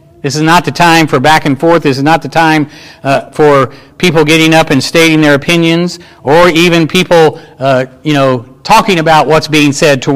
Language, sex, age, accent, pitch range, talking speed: English, male, 50-69, American, 140-170 Hz, 205 wpm